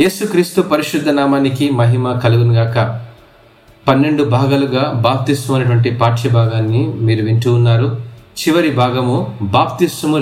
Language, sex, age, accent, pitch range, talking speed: Telugu, male, 30-49, native, 115-165 Hz, 100 wpm